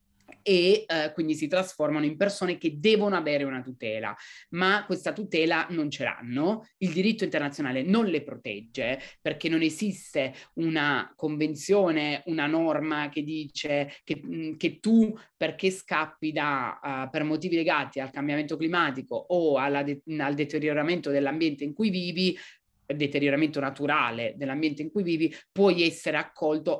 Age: 30-49